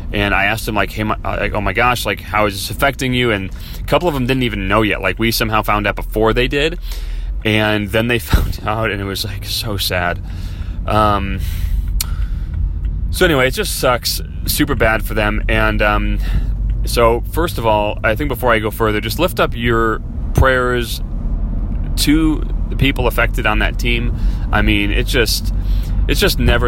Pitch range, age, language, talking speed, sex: 95-115 Hz, 30-49, English, 195 wpm, male